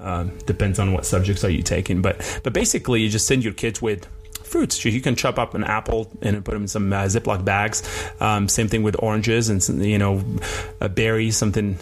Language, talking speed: English, 220 wpm